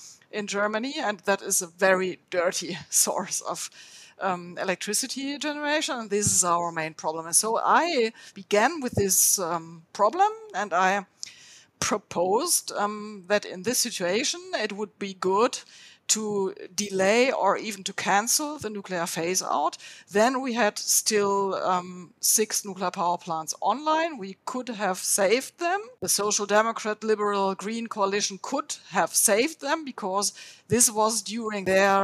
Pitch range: 185-225 Hz